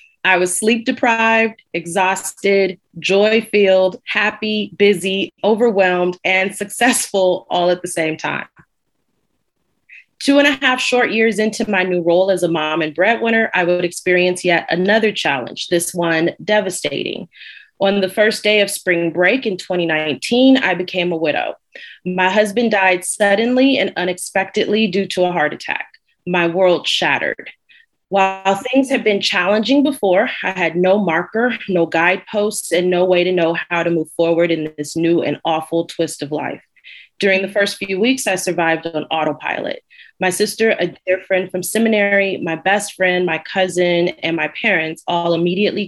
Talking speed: 160 wpm